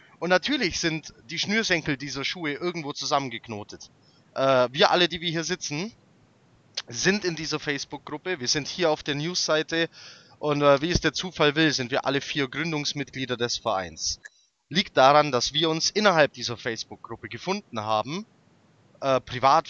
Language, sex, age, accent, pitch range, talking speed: German, male, 20-39, German, 125-165 Hz, 160 wpm